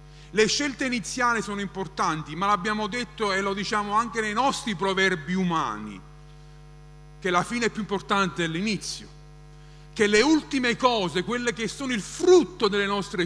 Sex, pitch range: male, 150-210 Hz